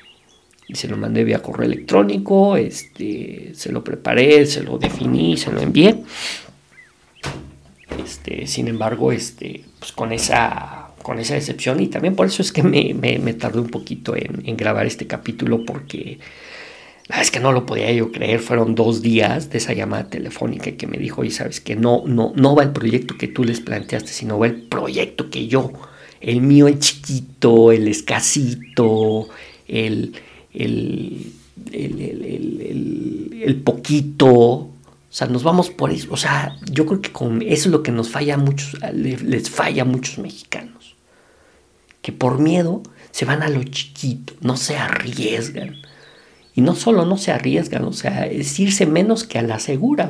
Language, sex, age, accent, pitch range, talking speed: Spanish, male, 50-69, Mexican, 115-150 Hz, 175 wpm